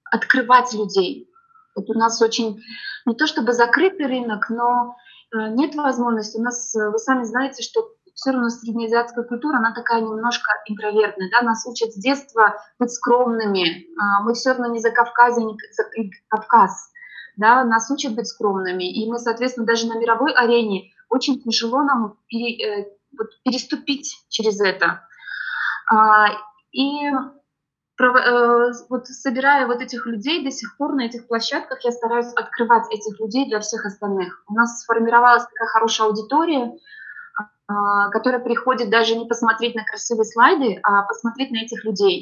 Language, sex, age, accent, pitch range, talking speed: Russian, female, 20-39, native, 215-255 Hz, 145 wpm